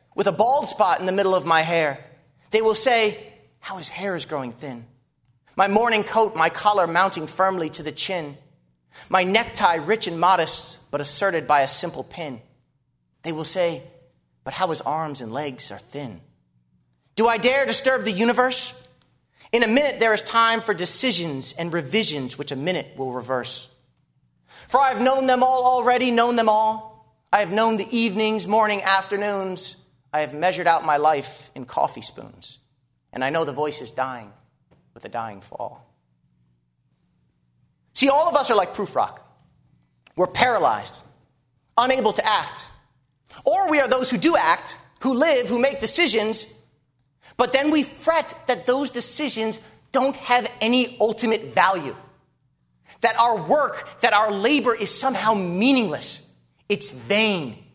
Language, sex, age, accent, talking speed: English, male, 30-49, American, 160 wpm